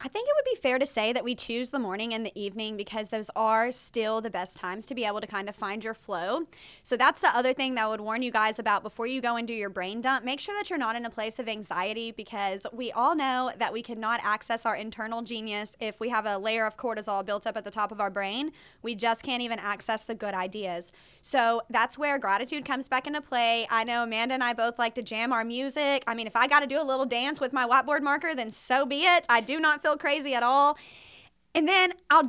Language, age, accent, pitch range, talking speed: English, 20-39, American, 220-290 Hz, 265 wpm